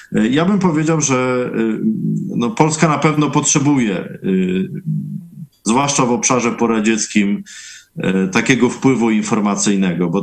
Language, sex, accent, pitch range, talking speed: Polish, male, native, 110-160 Hz, 100 wpm